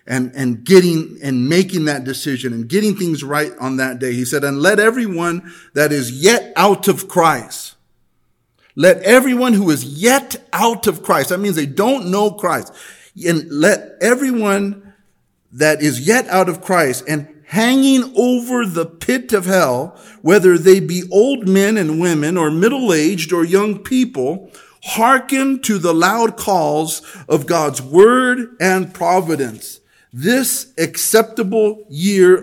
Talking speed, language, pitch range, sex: 150 wpm, English, 145-200 Hz, male